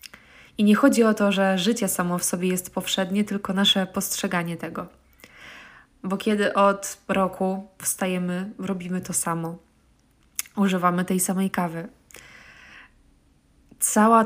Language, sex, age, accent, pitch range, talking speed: Polish, female, 20-39, native, 185-220 Hz, 120 wpm